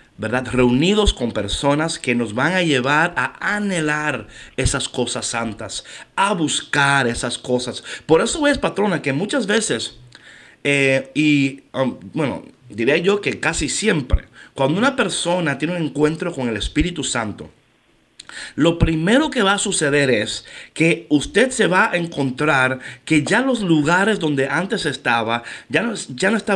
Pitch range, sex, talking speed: 130-170 Hz, male, 155 wpm